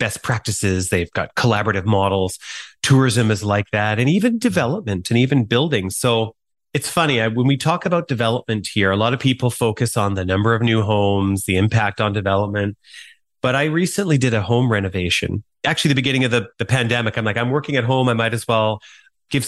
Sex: male